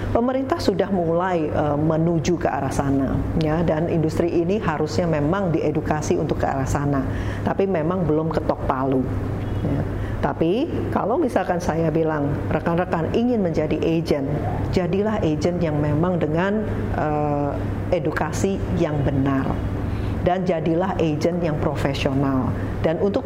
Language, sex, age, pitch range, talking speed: Indonesian, female, 40-59, 100-170 Hz, 130 wpm